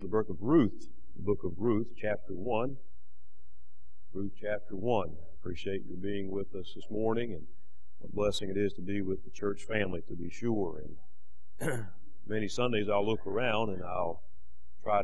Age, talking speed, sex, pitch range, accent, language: 40-59, 180 wpm, male, 85-110 Hz, American, English